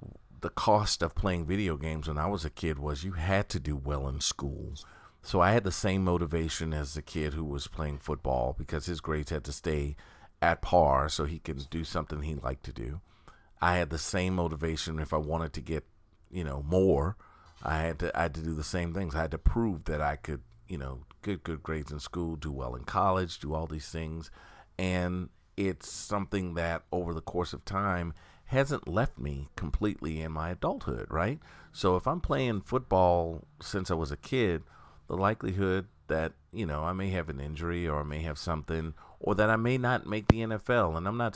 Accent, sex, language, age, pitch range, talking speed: American, male, English, 40-59, 75-95 Hz, 215 wpm